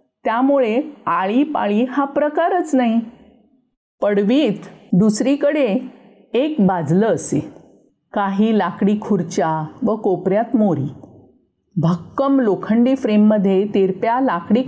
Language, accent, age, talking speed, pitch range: Marathi, native, 50-69, 90 wpm, 190-255 Hz